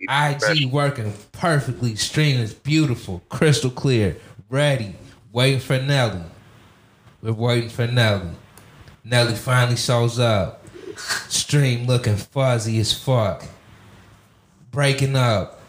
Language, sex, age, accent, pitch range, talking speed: English, male, 20-39, American, 110-135 Hz, 105 wpm